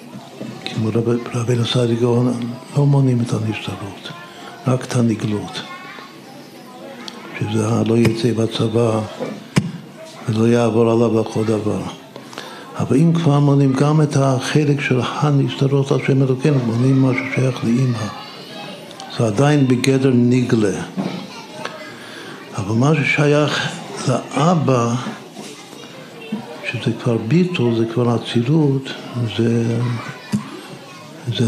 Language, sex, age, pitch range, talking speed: Hebrew, male, 60-79, 115-135 Hz, 95 wpm